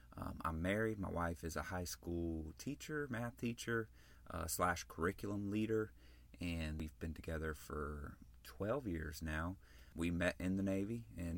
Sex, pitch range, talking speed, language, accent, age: male, 80-100 Hz, 160 wpm, English, American, 30-49